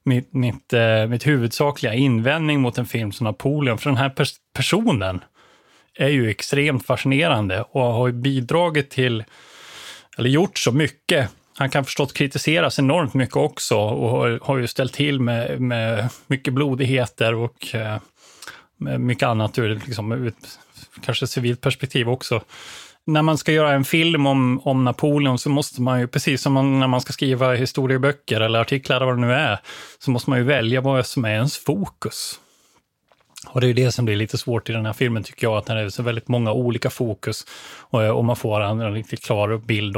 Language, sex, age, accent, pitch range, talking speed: Swedish, male, 30-49, native, 120-140 Hz, 180 wpm